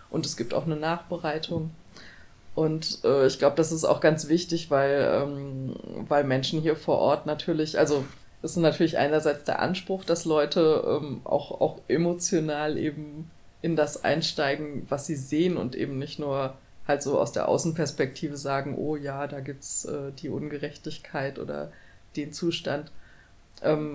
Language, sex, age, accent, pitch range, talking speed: German, female, 30-49, German, 140-165 Hz, 160 wpm